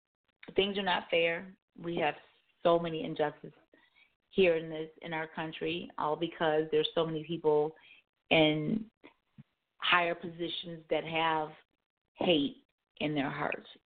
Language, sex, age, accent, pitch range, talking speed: English, female, 30-49, American, 155-180 Hz, 130 wpm